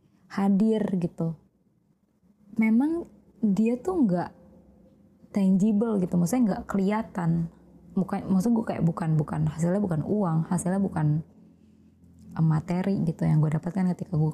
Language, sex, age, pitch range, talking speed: Indonesian, female, 20-39, 165-200 Hz, 115 wpm